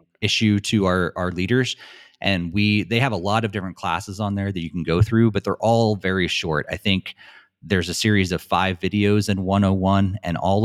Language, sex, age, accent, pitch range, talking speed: English, male, 30-49, American, 90-105 Hz, 215 wpm